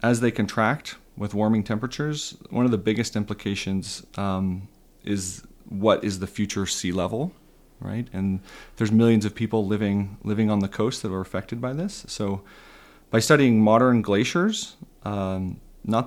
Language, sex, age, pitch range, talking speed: English, male, 30-49, 95-115 Hz, 155 wpm